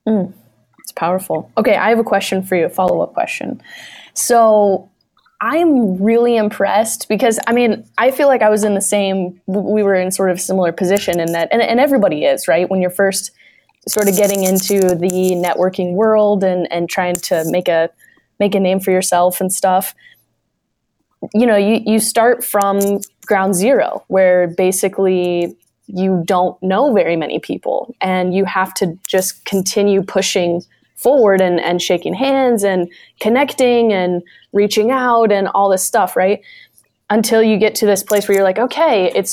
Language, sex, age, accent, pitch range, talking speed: English, female, 10-29, American, 185-220 Hz, 175 wpm